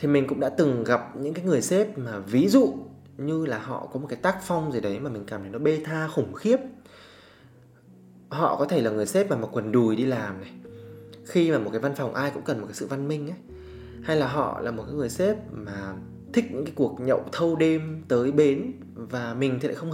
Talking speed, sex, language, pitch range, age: 250 wpm, male, Vietnamese, 115-160 Hz, 20-39